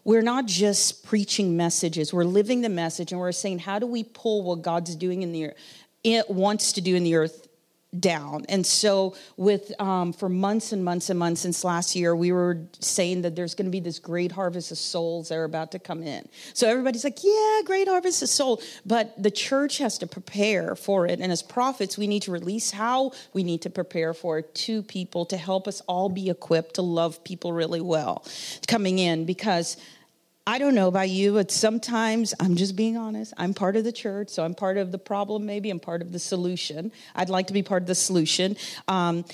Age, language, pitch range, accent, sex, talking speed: 40-59, English, 175-215 Hz, American, female, 220 wpm